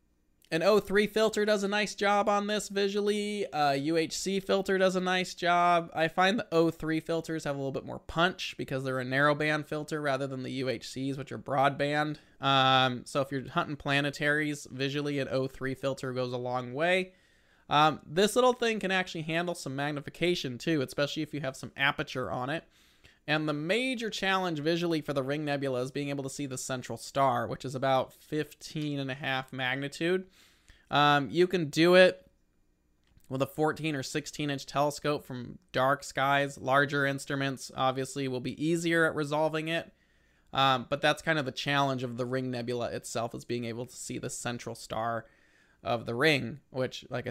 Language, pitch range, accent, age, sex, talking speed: English, 130-165 Hz, American, 20-39, male, 185 wpm